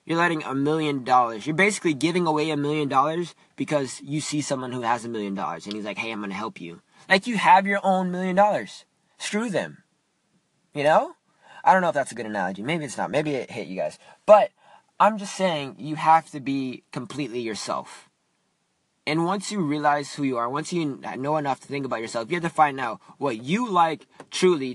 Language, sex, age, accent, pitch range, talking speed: English, male, 20-39, American, 140-175 Hz, 220 wpm